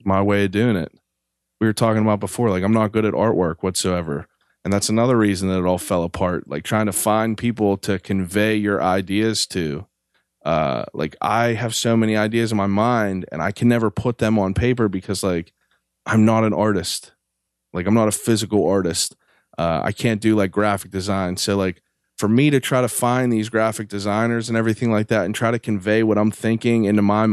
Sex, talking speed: male, 215 wpm